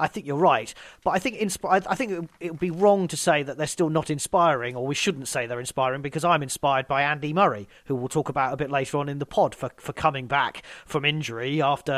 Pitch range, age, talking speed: 130-160 Hz, 30-49, 255 wpm